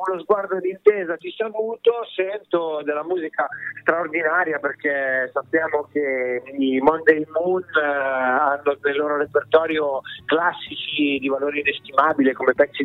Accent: native